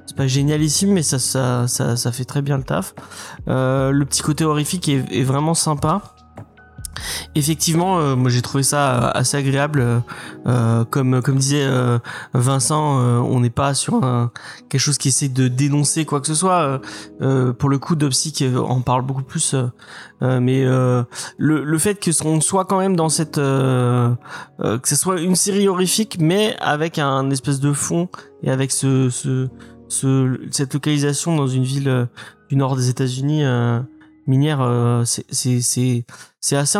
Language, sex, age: French, male, 20-39